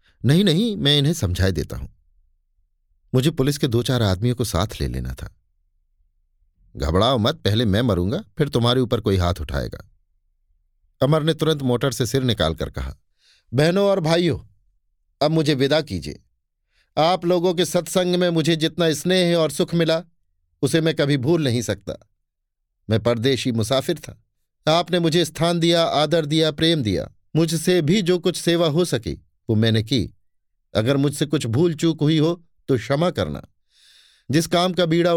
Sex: male